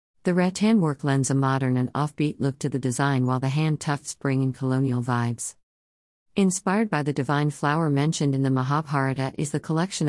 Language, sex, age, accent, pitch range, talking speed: English, female, 50-69, American, 130-160 Hz, 190 wpm